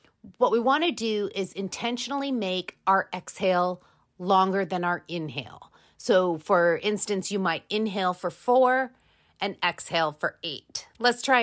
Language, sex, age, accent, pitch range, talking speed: English, female, 40-59, American, 165-220 Hz, 145 wpm